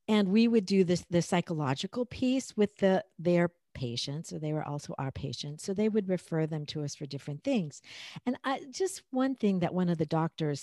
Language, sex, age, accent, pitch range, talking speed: English, female, 50-69, American, 155-225 Hz, 220 wpm